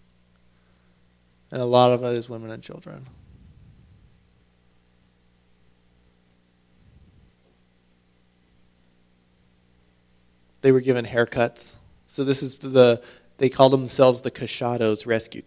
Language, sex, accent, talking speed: English, male, American, 85 wpm